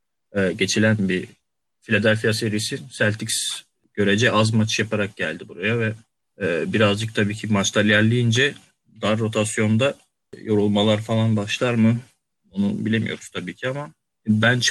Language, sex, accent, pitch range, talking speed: Turkish, male, native, 105-120 Hz, 120 wpm